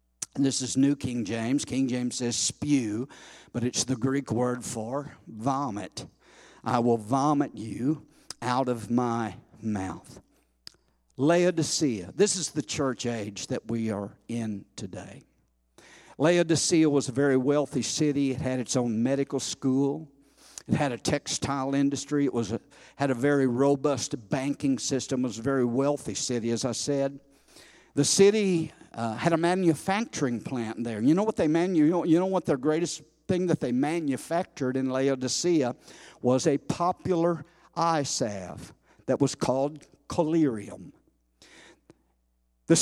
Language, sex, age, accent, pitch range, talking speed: English, male, 60-79, American, 125-160 Hz, 150 wpm